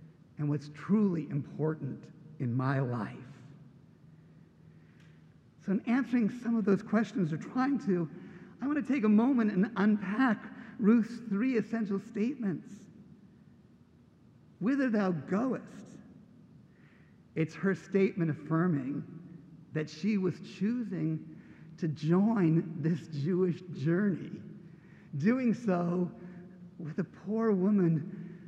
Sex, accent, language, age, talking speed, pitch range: male, American, English, 50-69, 105 wpm, 165-215 Hz